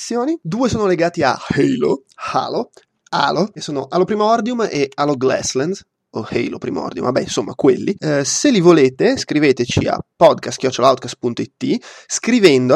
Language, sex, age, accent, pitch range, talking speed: Italian, male, 20-39, native, 125-160 Hz, 130 wpm